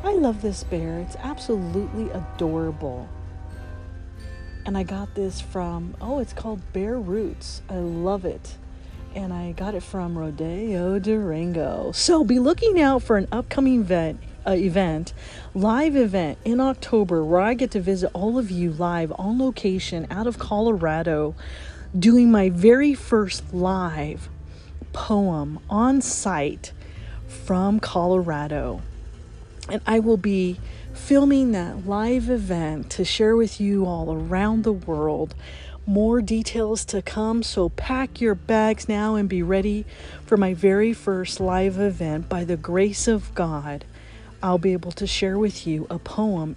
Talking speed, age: 145 wpm, 30-49